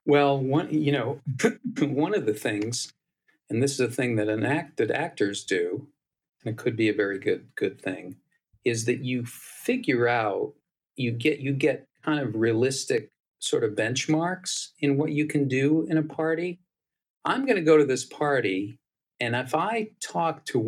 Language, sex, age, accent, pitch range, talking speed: English, male, 50-69, American, 115-160 Hz, 175 wpm